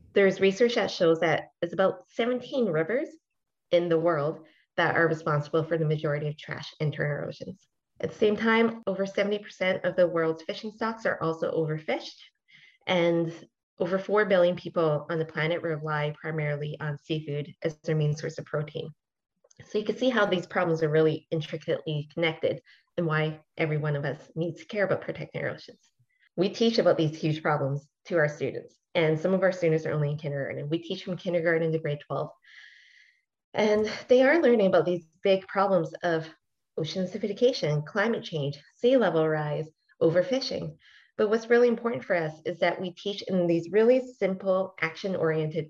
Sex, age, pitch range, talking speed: female, 20-39, 155-195 Hz, 180 wpm